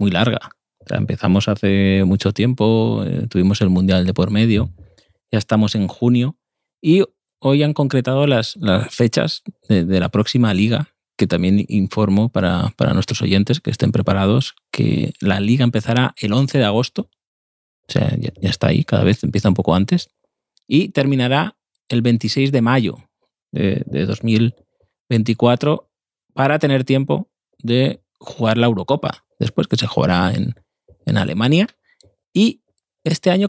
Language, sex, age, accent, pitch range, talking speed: Spanish, male, 30-49, Spanish, 105-135 Hz, 155 wpm